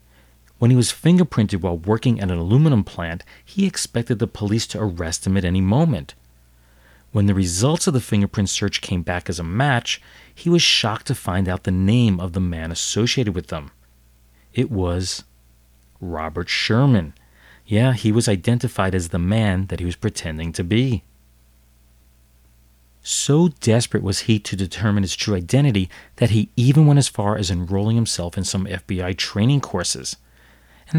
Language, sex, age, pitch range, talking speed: English, male, 40-59, 85-115 Hz, 170 wpm